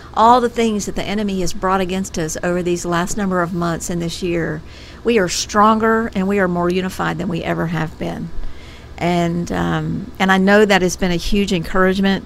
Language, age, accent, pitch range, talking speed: English, 50-69, American, 160-190 Hz, 210 wpm